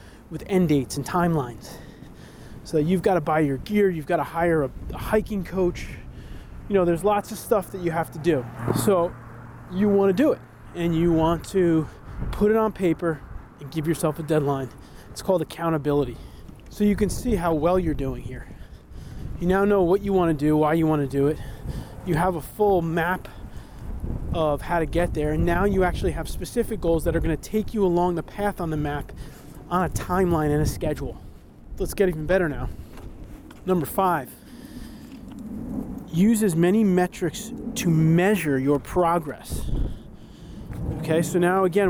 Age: 20-39